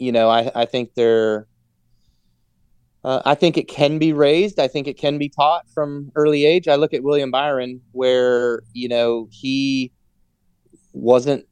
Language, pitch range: English, 105-125 Hz